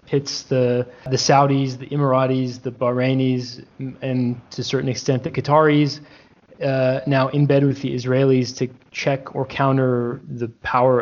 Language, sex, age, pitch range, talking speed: English, male, 20-39, 120-140 Hz, 150 wpm